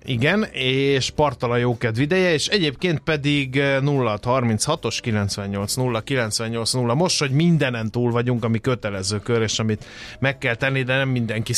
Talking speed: 135 wpm